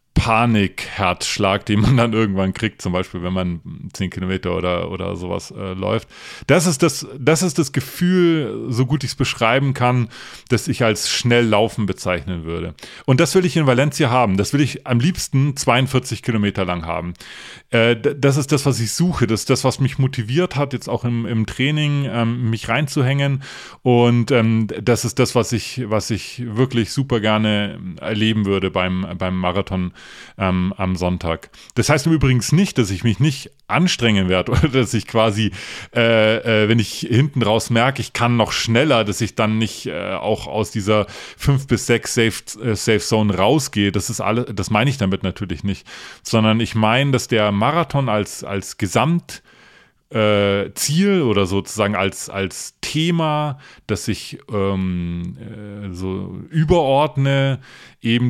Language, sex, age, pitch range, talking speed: German, male, 30-49, 100-135 Hz, 170 wpm